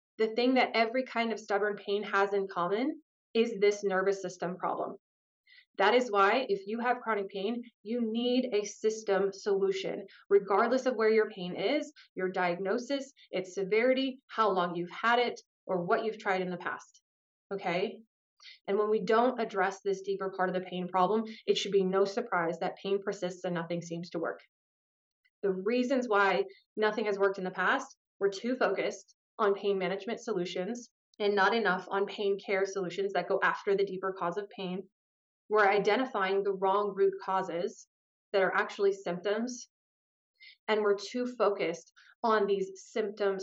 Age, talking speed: 20-39, 175 wpm